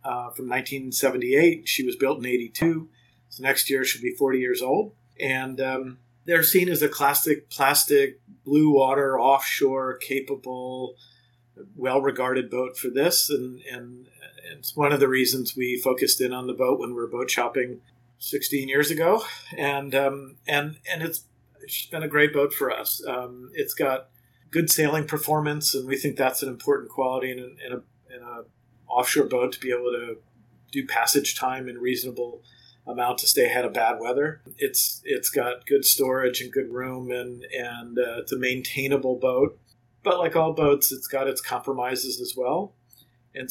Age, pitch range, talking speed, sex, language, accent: 40-59, 125-140 Hz, 175 wpm, male, English, American